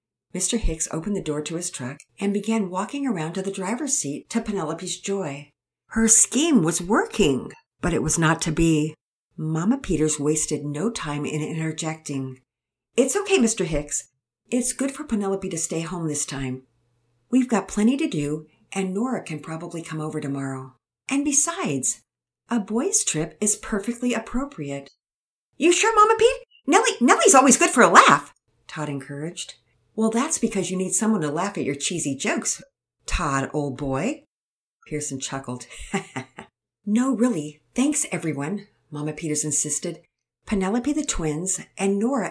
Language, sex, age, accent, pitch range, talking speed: English, female, 50-69, American, 140-215 Hz, 155 wpm